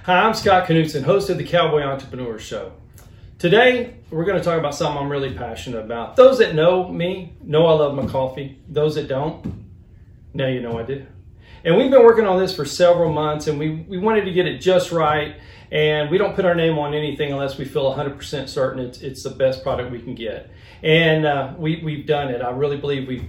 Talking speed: 225 wpm